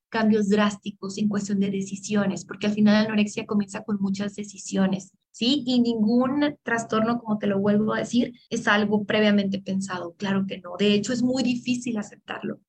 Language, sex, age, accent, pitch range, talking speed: Spanish, female, 20-39, Mexican, 205-255 Hz, 180 wpm